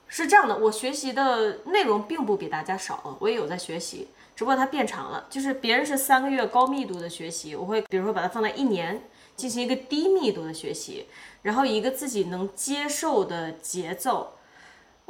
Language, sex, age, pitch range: Chinese, female, 20-39, 190-270 Hz